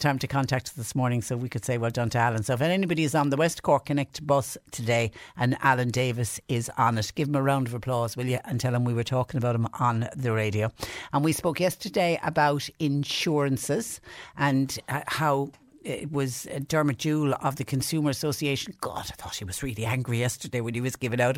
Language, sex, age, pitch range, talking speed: English, female, 60-79, 130-150 Hz, 220 wpm